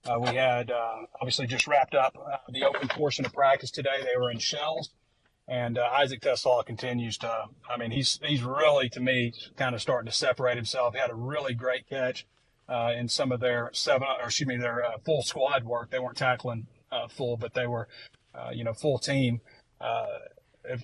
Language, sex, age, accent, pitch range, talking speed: English, male, 40-59, American, 120-135 Hz, 205 wpm